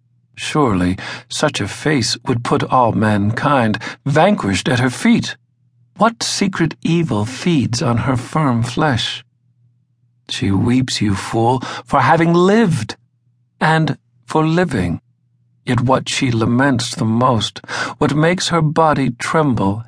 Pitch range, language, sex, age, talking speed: 120-140 Hz, English, male, 50-69, 125 wpm